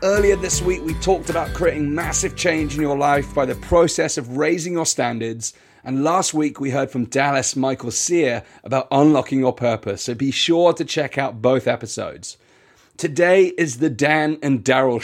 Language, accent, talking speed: English, British, 185 wpm